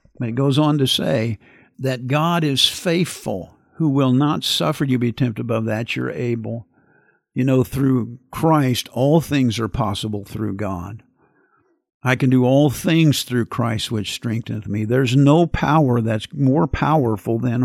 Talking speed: 165 wpm